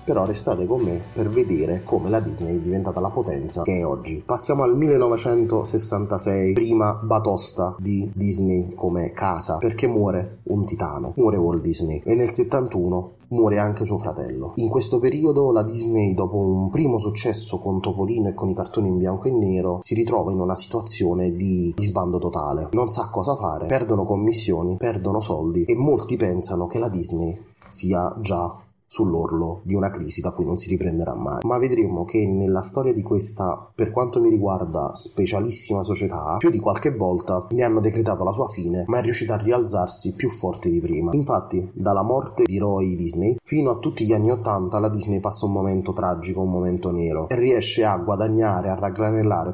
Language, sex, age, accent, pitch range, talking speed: Italian, male, 30-49, native, 90-110 Hz, 185 wpm